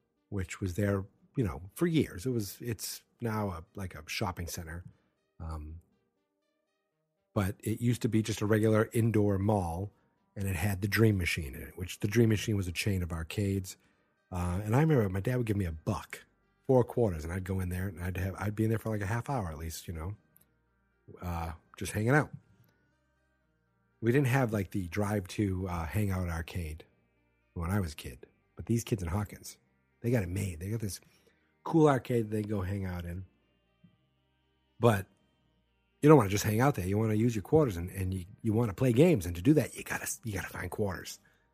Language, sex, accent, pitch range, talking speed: English, male, American, 90-115 Hz, 220 wpm